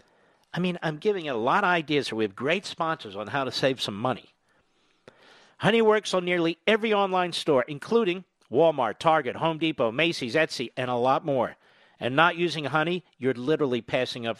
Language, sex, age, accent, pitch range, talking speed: English, male, 50-69, American, 135-180 Hz, 190 wpm